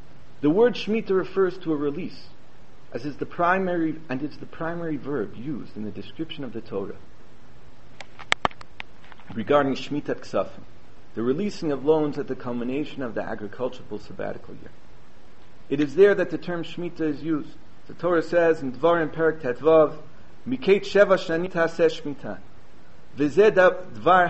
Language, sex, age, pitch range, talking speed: English, male, 40-59, 135-170 Hz, 140 wpm